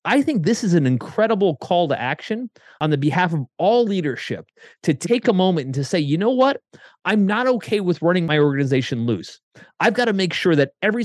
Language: English